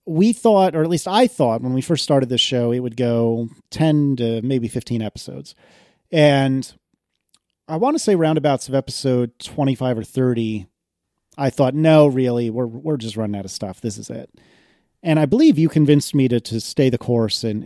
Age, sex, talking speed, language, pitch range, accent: 30-49, male, 200 wpm, English, 115-155 Hz, American